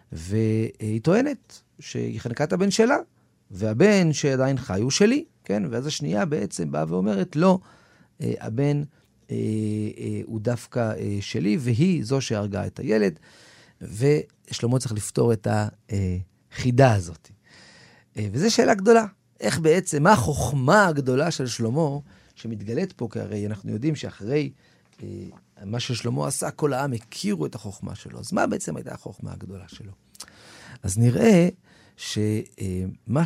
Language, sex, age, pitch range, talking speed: Hebrew, male, 40-59, 105-160 Hz, 130 wpm